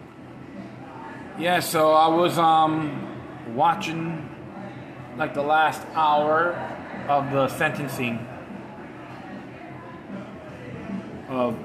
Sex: male